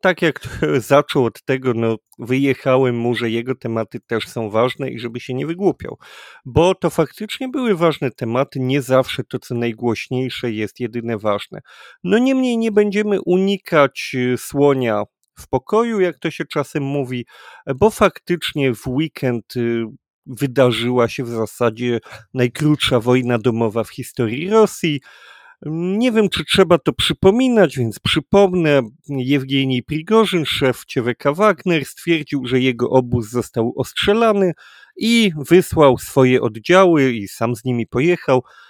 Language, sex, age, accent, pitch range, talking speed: Polish, male, 40-59, native, 120-175 Hz, 140 wpm